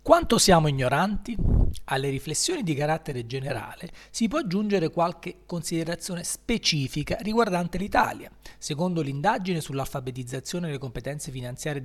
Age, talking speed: 40-59, 110 wpm